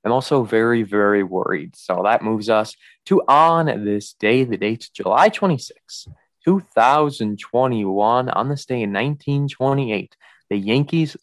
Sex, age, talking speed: male, 20-39, 170 wpm